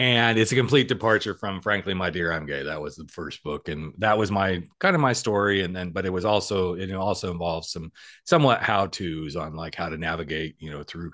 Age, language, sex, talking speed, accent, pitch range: 40-59, English, male, 240 wpm, American, 90-130 Hz